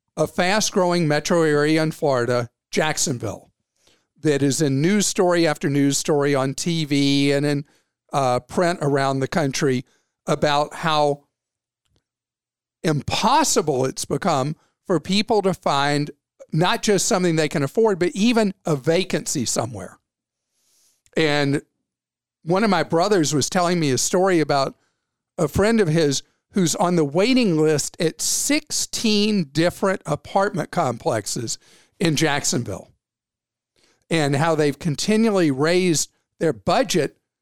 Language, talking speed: English, 125 wpm